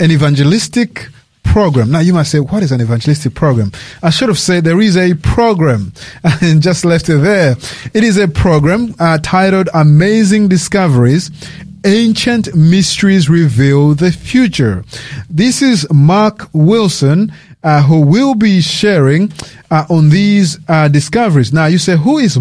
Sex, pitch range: male, 140-185 Hz